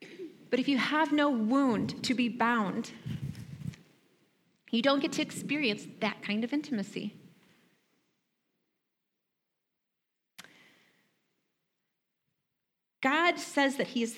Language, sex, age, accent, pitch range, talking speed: English, female, 30-49, American, 205-295 Hz, 95 wpm